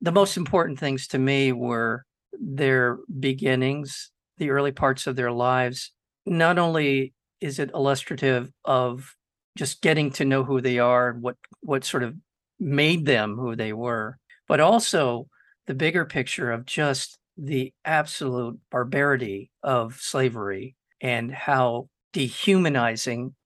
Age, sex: 50-69, male